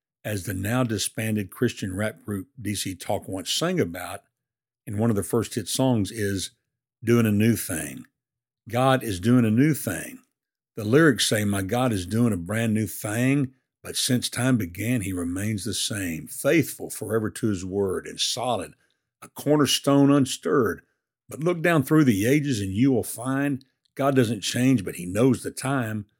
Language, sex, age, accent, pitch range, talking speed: English, male, 50-69, American, 105-130 Hz, 175 wpm